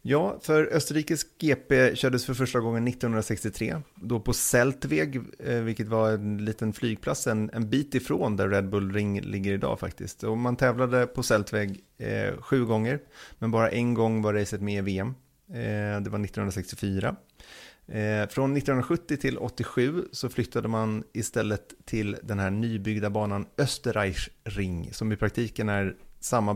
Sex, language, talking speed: male, Swedish, 160 wpm